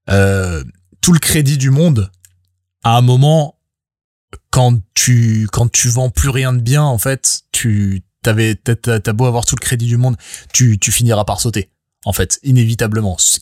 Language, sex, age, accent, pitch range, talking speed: French, male, 20-39, French, 110-150 Hz, 180 wpm